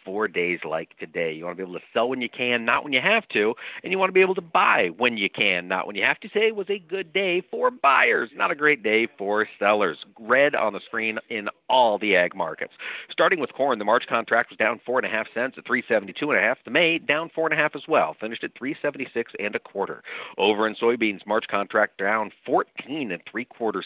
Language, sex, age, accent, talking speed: English, male, 50-69, American, 225 wpm